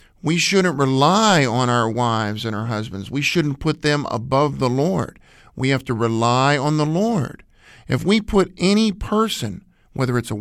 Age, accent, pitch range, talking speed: 50-69, American, 130-170 Hz, 180 wpm